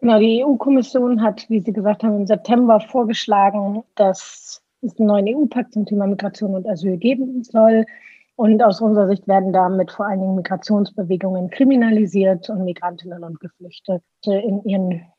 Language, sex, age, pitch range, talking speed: German, female, 30-49, 185-215 Hz, 155 wpm